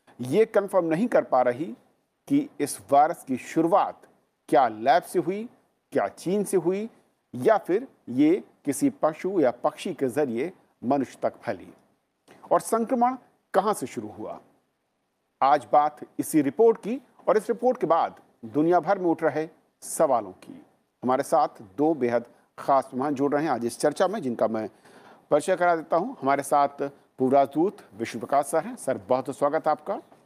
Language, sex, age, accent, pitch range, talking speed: Hindi, male, 50-69, native, 140-200 Hz, 170 wpm